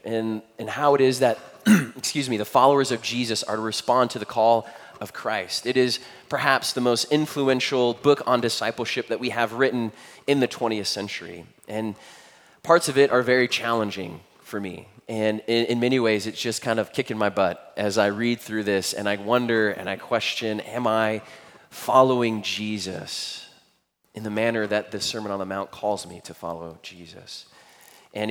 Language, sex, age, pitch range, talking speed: English, male, 20-39, 105-130 Hz, 185 wpm